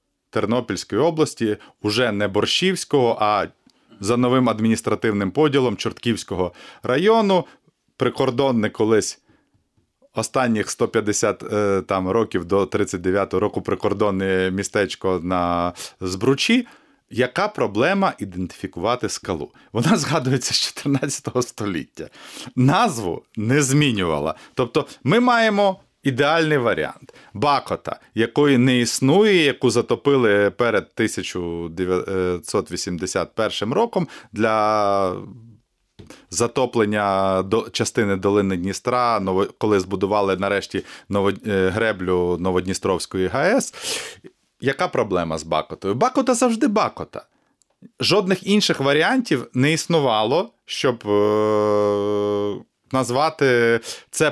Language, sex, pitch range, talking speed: English, male, 100-145 Hz, 85 wpm